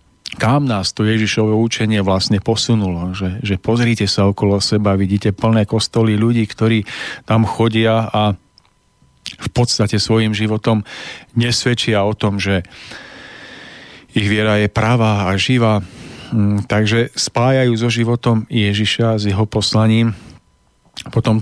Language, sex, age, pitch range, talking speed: Slovak, male, 40-59, 100-115 Hz, 125 wpm